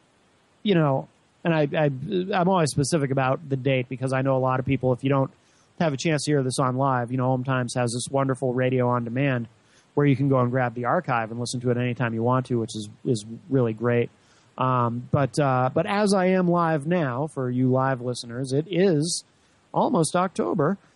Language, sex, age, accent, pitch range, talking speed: English, male, 30-49, American, 130-215 Hz, 220 wpm